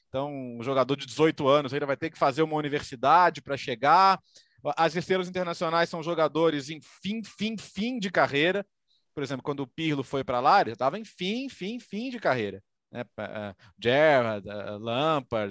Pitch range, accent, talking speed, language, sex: 130-200 Hz, Brazilian, 180 wpm, Portuguese, male